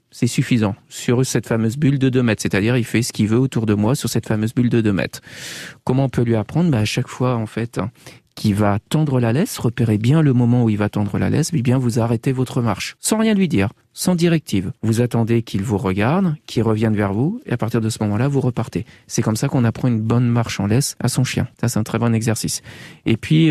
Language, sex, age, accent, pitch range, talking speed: French, male, 40-59, French, 110-135 Hz, 260 wpm